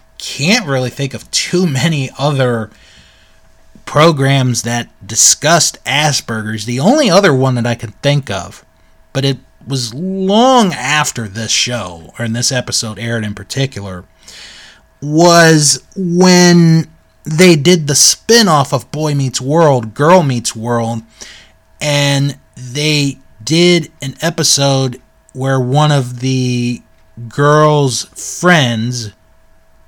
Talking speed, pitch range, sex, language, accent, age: 120 wpm, 110-155 Hz, male, English, American, 30-49